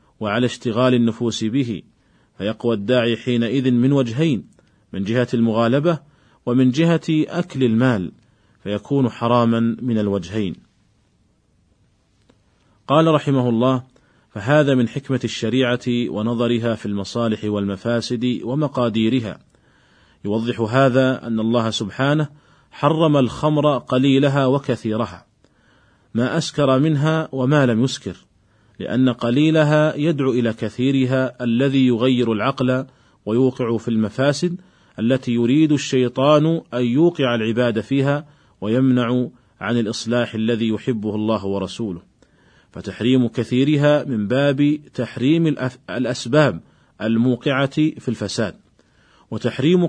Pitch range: 115-140 Hz